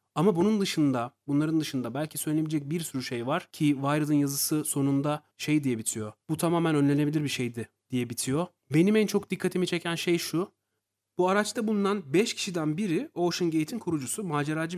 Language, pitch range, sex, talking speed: Turkish, 140-185 Hz, male, 170 wpm